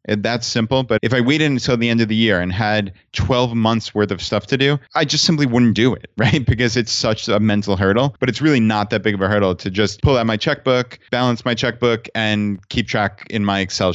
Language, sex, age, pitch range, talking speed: English, male, 30-49, 105-120 Hz, 250 wpm